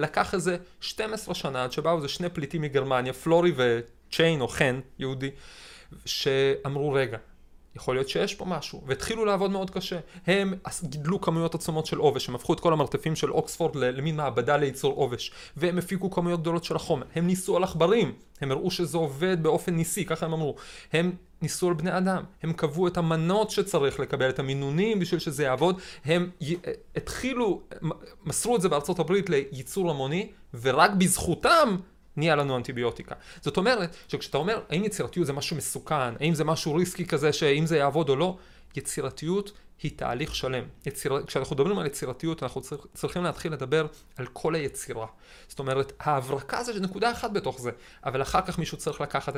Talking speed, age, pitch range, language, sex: 170 wpm, 30-49, 135-180 Hz, Hebrew, male